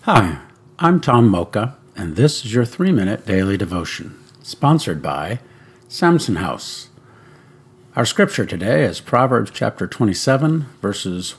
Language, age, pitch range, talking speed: English, 60-79, 110-140 Hz, 120 wpm